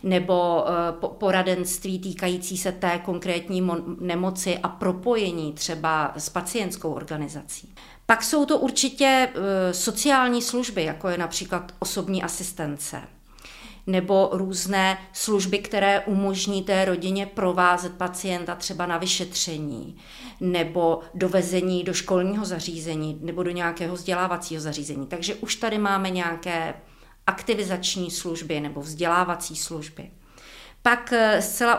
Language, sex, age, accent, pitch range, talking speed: Czech, female, 40-59, native, 170-205 Hz, 110 wpm